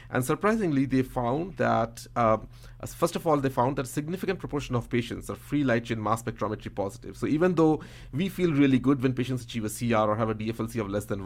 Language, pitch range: English, 115-135 Hz